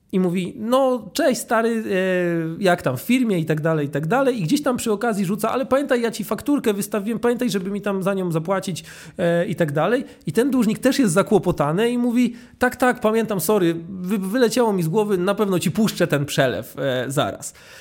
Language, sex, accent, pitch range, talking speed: Polish, male, native, 160-215 Hz, 200 wpm